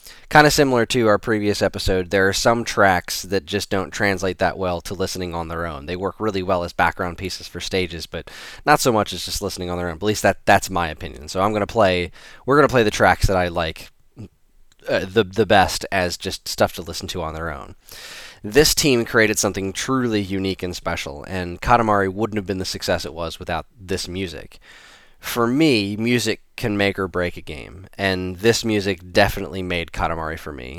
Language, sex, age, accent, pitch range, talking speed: English, male, 20-39, American, 90-110 Hz, 210 wpm